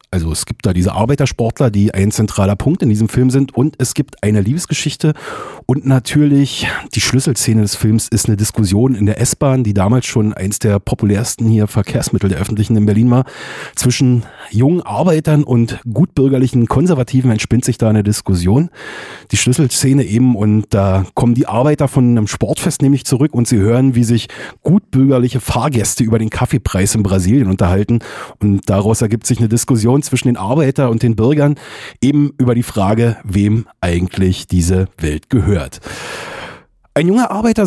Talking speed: 165 wpm